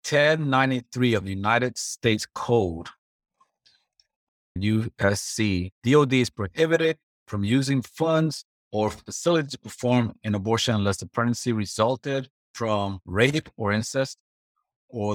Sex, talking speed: male, 110 wpm